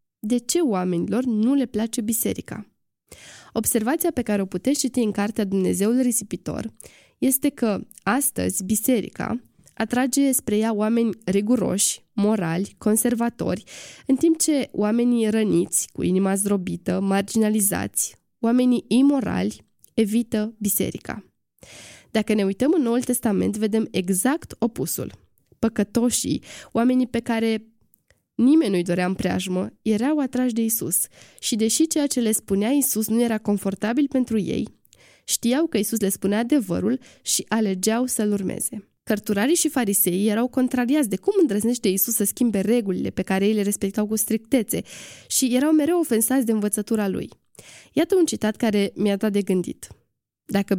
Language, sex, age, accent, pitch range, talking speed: Romanian, female, 20-39, native, 205-255 Hz, 140 wpm